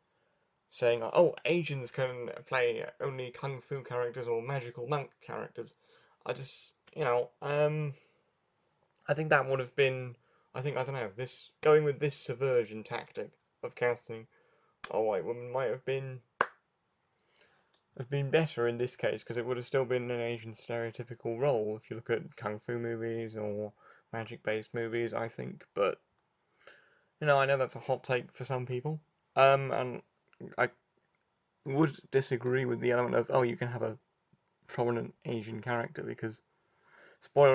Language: English